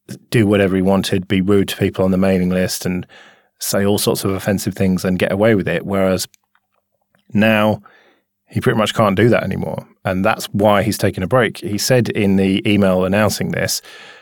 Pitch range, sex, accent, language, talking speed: 95-110 Hz, male, British, English, 200 wpm